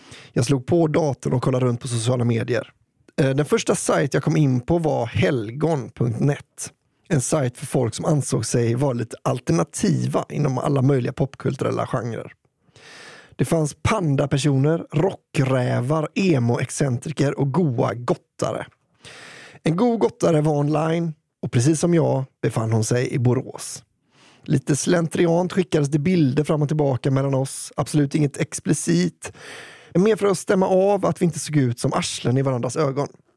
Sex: male